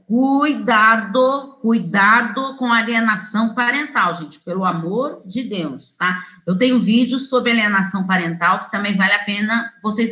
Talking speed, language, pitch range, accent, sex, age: 135 wpm, Portuguese, 205-265 Hz, Brazilian, female, 40-59